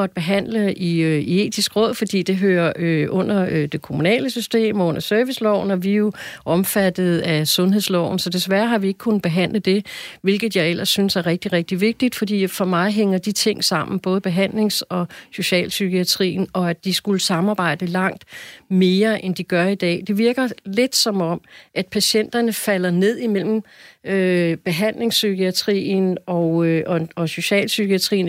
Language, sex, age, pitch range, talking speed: Danish, female, 40-59, 180-215 Hz, 165 wpm